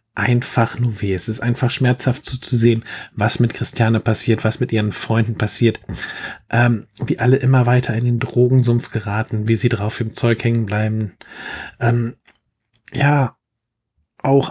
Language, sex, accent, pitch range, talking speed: German, male, German, 110-130 Hz, 155 wpm